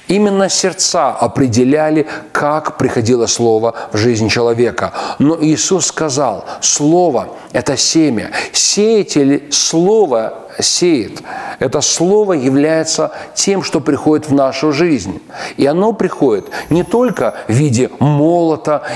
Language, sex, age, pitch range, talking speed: Russian, male, 40-59, 130-170 Hz, 115 wpm